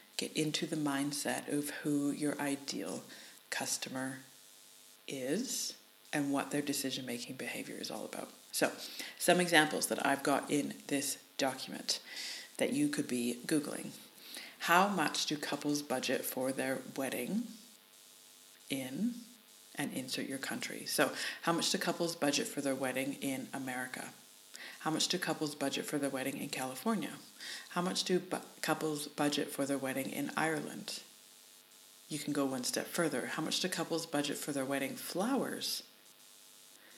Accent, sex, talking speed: American, female, 150 wpm